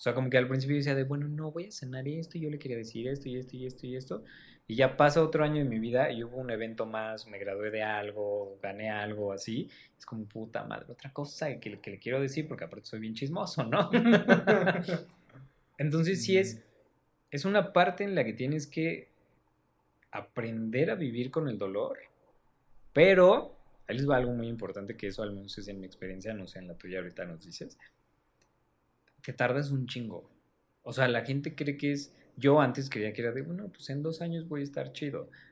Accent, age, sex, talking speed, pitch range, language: Mexican, 20-39, male, 220 wpm, 110-150 Hz, Spanish